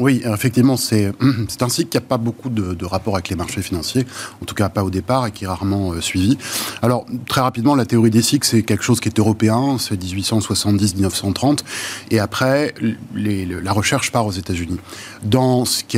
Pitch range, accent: 100-125 Hz, French